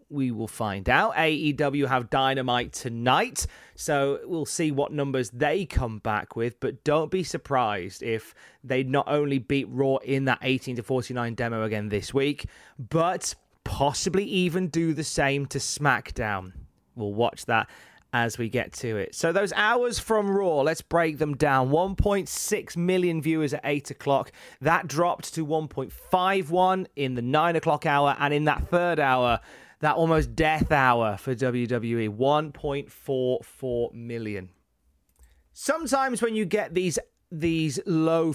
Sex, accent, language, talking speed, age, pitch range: male, British, English, 150 wpm, 30-49, 125-165 Hz